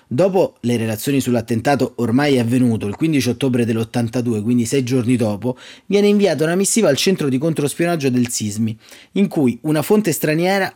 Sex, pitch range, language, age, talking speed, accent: male, 125-165 Hz, Italian, 30-49, 160 wpm, native